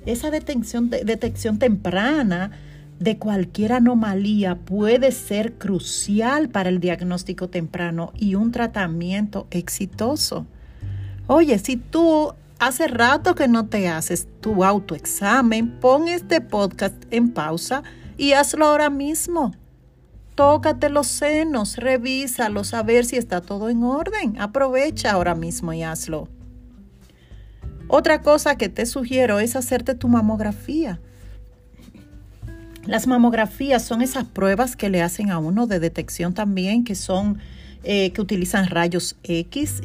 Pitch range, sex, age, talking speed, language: 175-250 Hz, female, 40-59, 125 wpm, Spanish